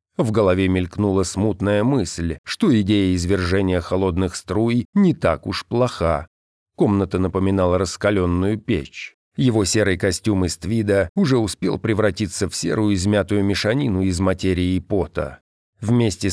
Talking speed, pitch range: 130 wpm, 90-110 Hz